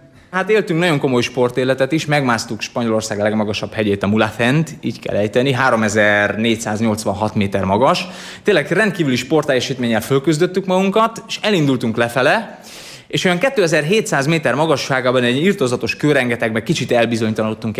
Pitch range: 125-175 Hz